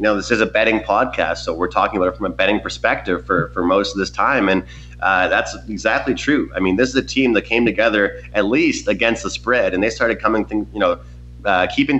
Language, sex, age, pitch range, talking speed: English, male, 30-49, 95-120 Hz, 250 wpm